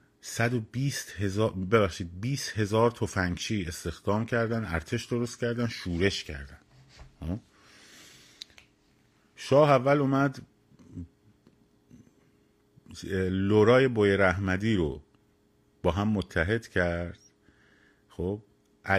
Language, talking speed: Persian, 80 wpm